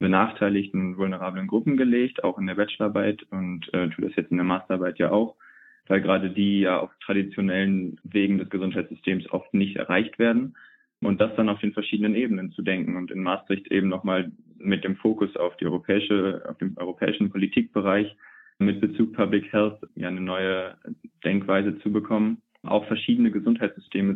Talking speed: 170 wpm